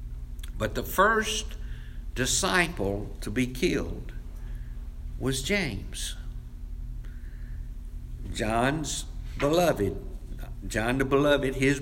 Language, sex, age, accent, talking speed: English, male, 60-79, American, 75 wpm